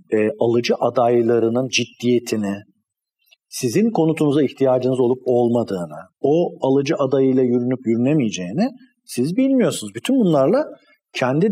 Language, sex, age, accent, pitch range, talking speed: Turkish, male, 50-69, native, 125-175 Hz, 95 wpm